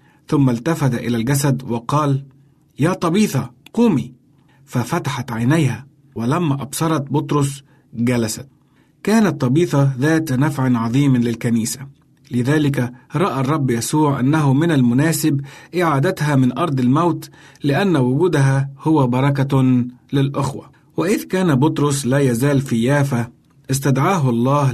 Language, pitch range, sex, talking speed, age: Arabic, 125-155 Hz, male, 110 wpm, 50-69